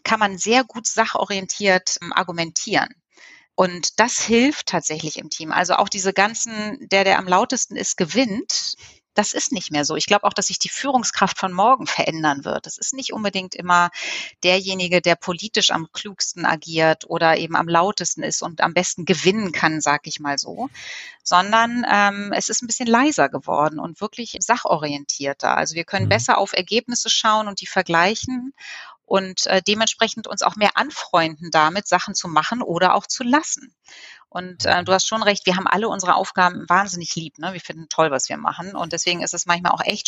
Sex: female